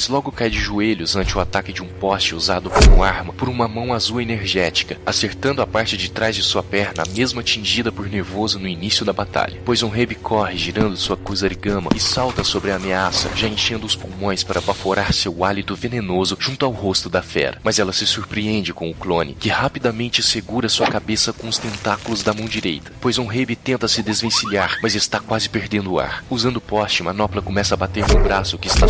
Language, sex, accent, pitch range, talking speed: Portuguese, male, Brazilian, 95-110 Hz, 210 wpm